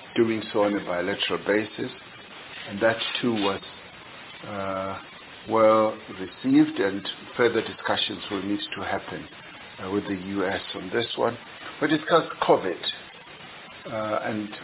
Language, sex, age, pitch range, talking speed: English, male, 60-79, 105-135 Hz, 130 wpm